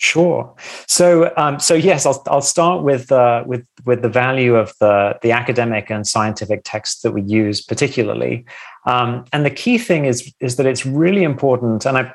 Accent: British